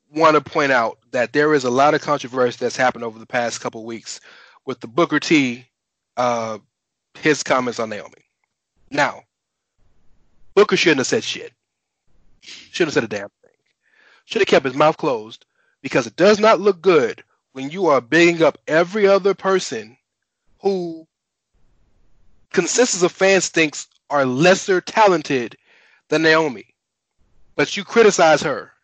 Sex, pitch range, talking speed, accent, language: male, 130-180 Hz, 150 wpm, American, English